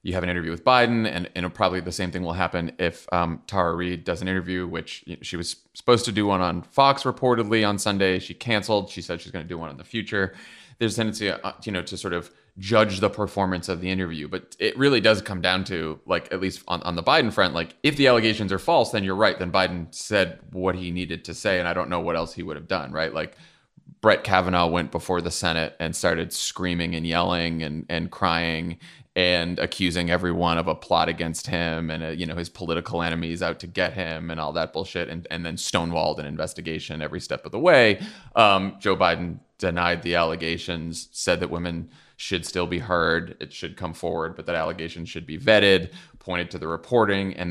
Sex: male